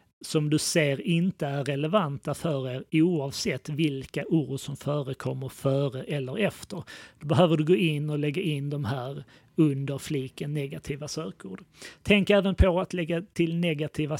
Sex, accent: male, native